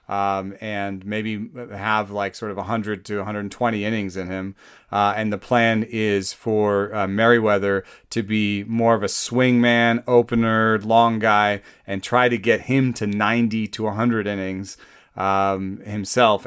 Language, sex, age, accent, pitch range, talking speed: English, male, 30-49, American, 95-115 Hz, 155 wpm